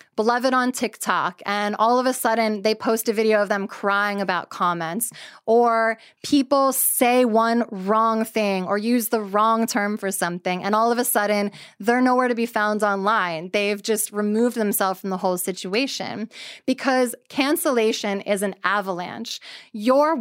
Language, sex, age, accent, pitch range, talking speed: English, female, 20-39, American, 200-240 Hz, 165 wpm